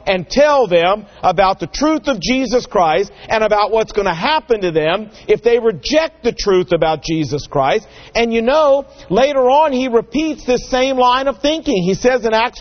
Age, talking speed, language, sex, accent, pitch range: 50-69, 195 wpm, English, male, American, 185-270 Hz